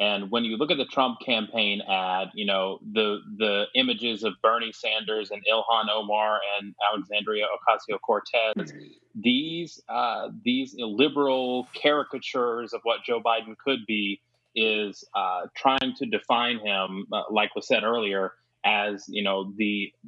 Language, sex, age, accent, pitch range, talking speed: English, male, 30-49, American, 105-125 Hz, 145 wpm